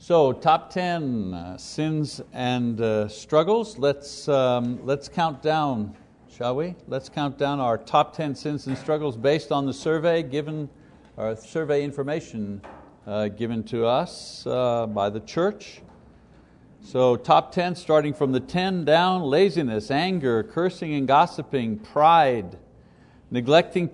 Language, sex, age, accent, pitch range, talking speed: English, male, 60-79, American, 120-160 Hz, 135 wpm